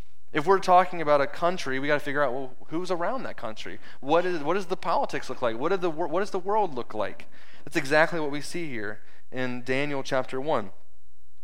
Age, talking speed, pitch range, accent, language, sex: 20-39, 225 wpm, 125-160 Hz, American, English, male